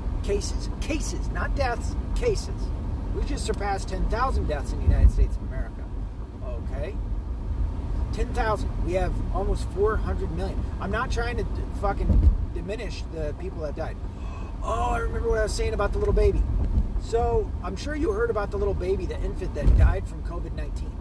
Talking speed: 170 wpm